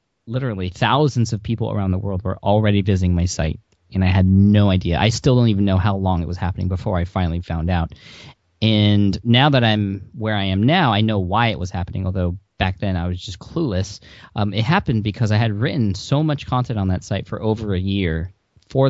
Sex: male